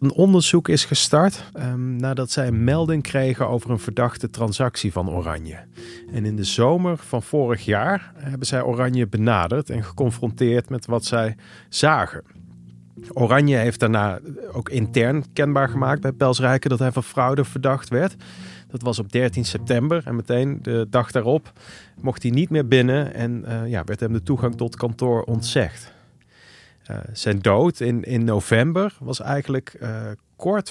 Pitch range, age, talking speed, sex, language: 115-140 Hz, 40-59, 165 wpm, male, Dutch